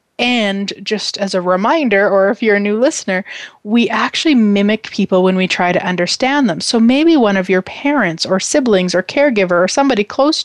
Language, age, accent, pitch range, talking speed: English, 30-49, American, 190-250 Hz, 195 wpm